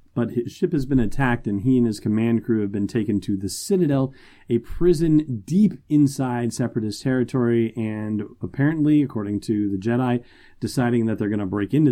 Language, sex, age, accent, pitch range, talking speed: English, male, 30-49, American, 105-125 Hz, 185 wpm